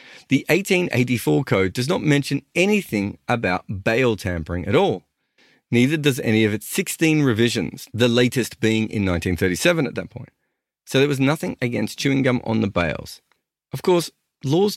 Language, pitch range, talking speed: English, 95-140 Hz, 165 wpm